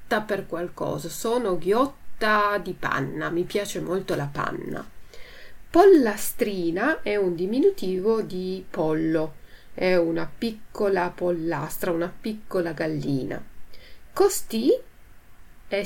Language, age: Italian, 40-59